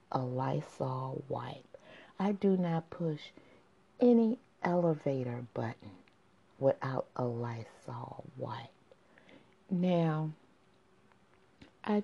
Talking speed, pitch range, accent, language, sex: 80 wpm, 150-195 Hz, American, English, female